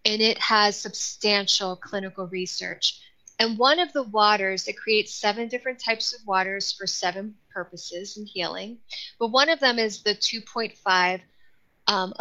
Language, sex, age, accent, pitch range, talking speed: English, female, 20-39, American, 200-240 Hz, 145 wpm